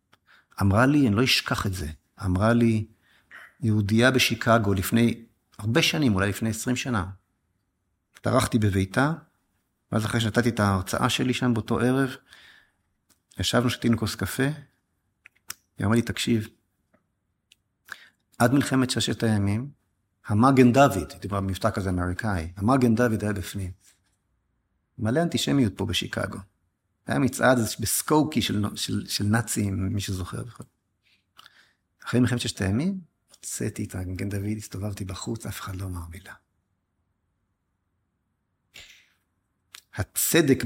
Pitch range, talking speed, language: 95-120 Hz, 115 wpm, Hebrew